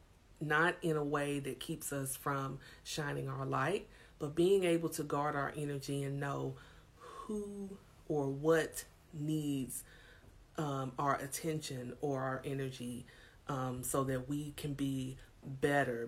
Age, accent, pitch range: 30-49, American, 130-155 Hz